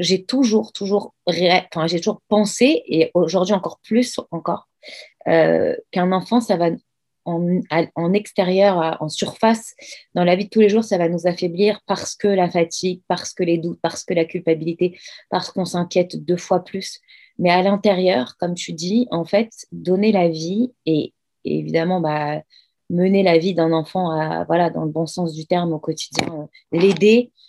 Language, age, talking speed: French, 30-49, 180 wpm